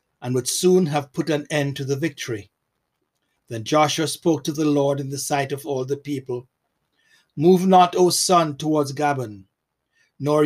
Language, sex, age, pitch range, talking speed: English, male, 60-79, 135-160 Hz, 170 wpm